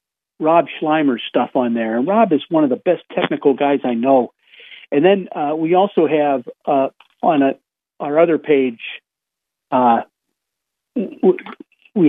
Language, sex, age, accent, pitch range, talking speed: English, male, 50-69, American, 130-175 Hz, 145 wpm